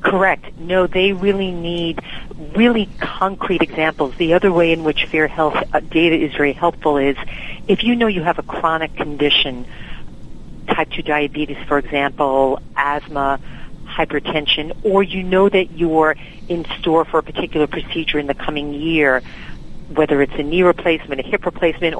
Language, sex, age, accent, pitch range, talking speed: English, female, 50-69, American, 150-180 Hz, 160 wpm